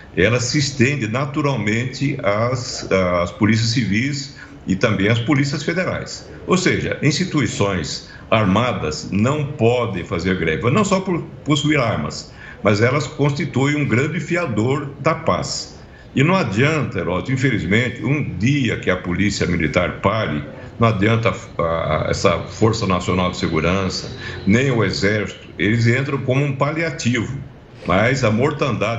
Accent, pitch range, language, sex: Brazilian, 100-150 Hz, Portuguese, male